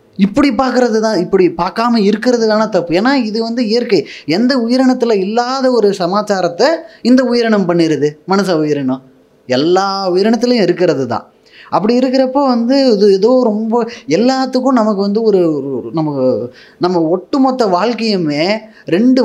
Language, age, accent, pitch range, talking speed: Tamil, 20-39, native, 175-245 Hz, 125 wpm